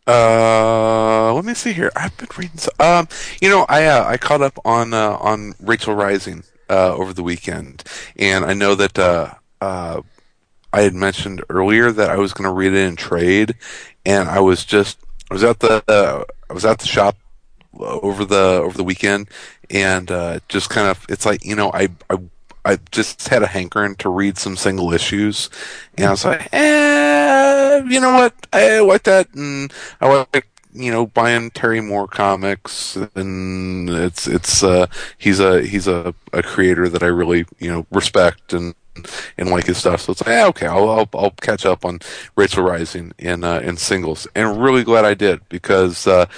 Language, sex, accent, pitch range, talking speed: English, male, American, 90-115 Hz, 195 wpm